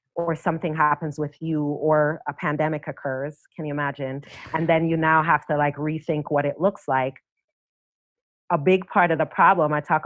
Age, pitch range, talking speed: 30-49, 145-165 Hz, 190 wpm